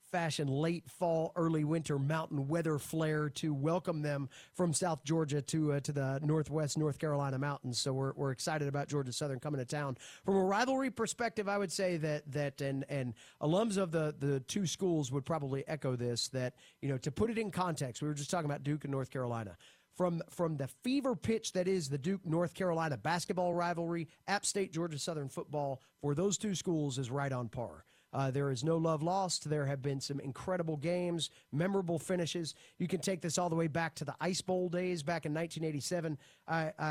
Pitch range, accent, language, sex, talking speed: 135-170 Hz, American, English, male, 205 wpm